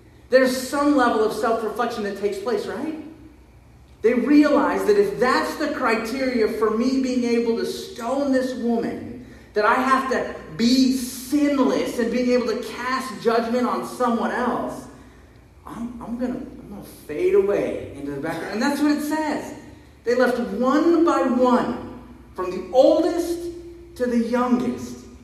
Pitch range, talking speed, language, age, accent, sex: 175-260 Hz, 155 wpm, English, 30-49, American, male